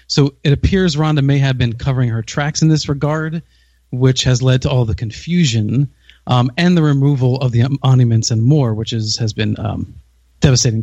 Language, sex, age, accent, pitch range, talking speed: English, male, 30-49, American, 115-145 Hz, 190 wpm